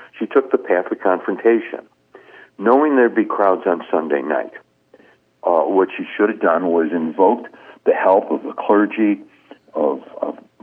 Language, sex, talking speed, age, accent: English, male, 160 wpm, 60-79, American